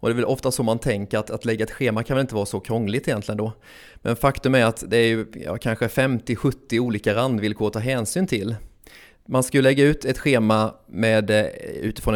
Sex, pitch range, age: male, 110-130 Hz, 30-49